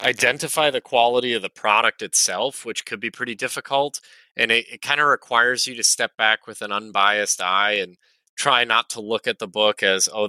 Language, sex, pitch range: English, male, 100-110 Hz